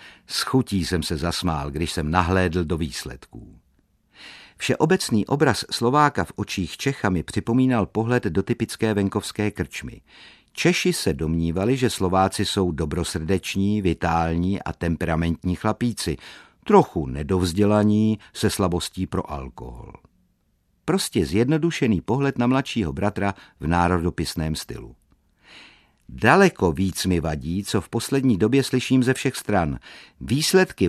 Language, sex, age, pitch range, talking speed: Czech, male, 50-69, 90-120 Hz, 120 wpm